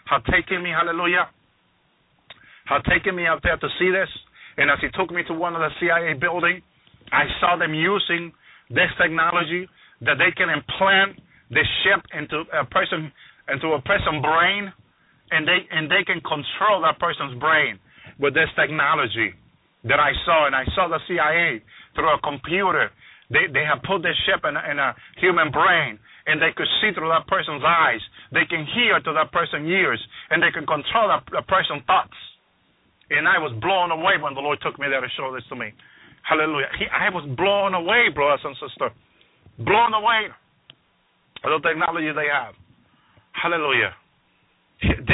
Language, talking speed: English, 175 wpm